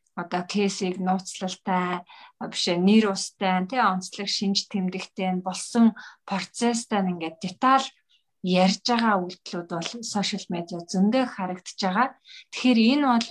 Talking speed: 120 wpm